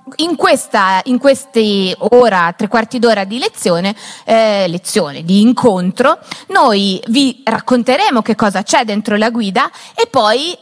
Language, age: Italian, 30-49